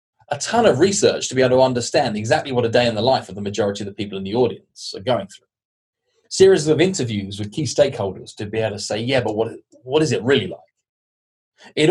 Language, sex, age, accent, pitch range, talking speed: English, male, 20-39, British, 110-145 Hz, 240 wpm